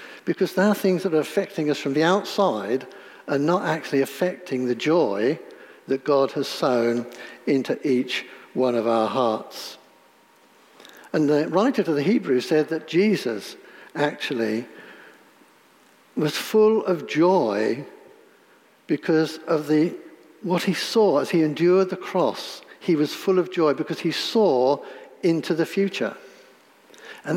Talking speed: 140 wpm